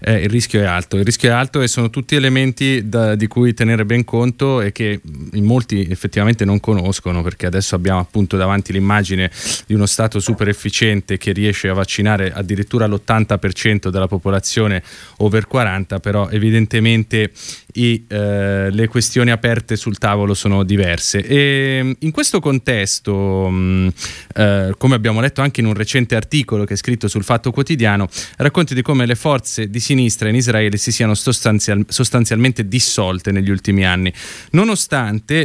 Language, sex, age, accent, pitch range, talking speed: Italian, male, 20-39, native, 100-125 Hz, 160 wpm